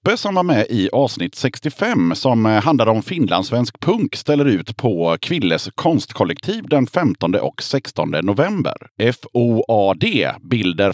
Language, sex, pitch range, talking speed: Swedish, male, 100-140 Hz, 125 wpm